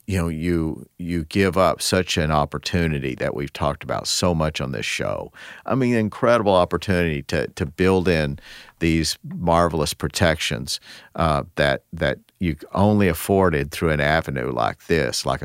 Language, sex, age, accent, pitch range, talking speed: English, male, 50-69, American, 75-95 Hz, 160 wpm